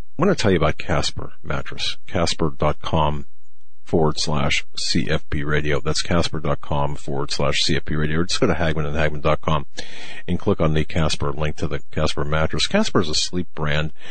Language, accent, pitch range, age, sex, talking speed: English, American, 75-90 Hz, 50-69, male, 170 wpm